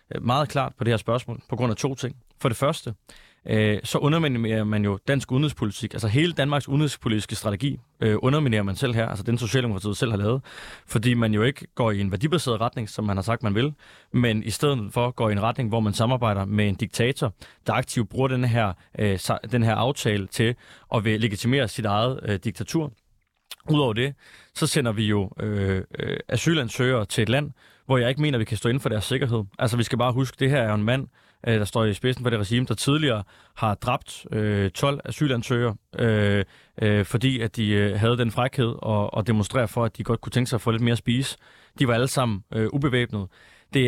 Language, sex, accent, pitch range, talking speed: Danish, male, native, 110-130 Hz, 215 wpm